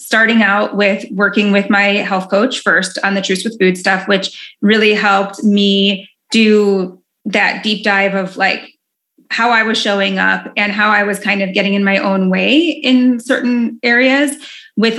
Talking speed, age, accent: 180 wpm, 20-39, American